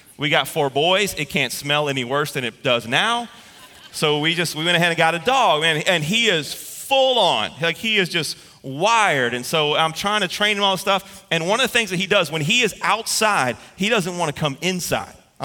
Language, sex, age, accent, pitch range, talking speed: English, male, 30-49, American, 160-220 Hz, 245 wpm